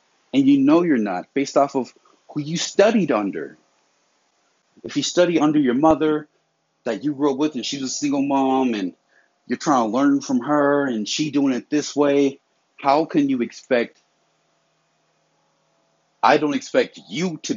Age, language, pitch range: 40-59, English, 120-200 Hz